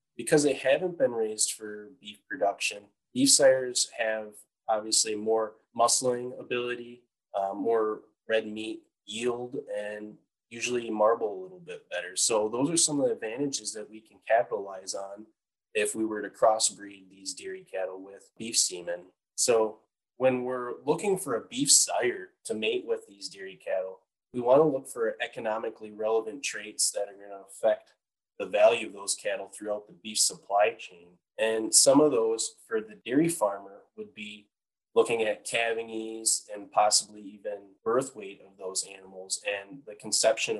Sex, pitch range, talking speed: male, 105-155 Hz, 165 wpm